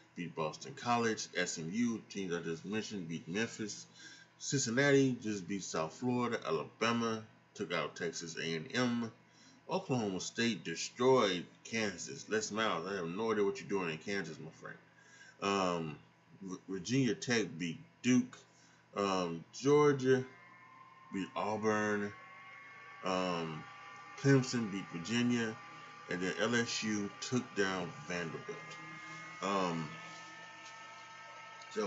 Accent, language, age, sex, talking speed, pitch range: American, English, 30-49, male, 110 wpm, 95-130 Hz